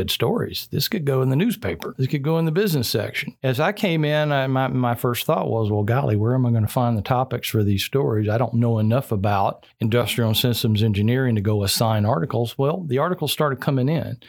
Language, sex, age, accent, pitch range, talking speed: English, male, 50-69, American, 110-135 Hz, 230 wpm